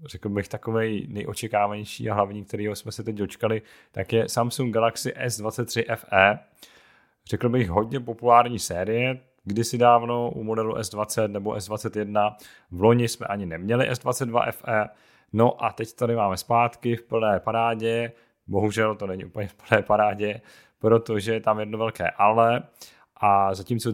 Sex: male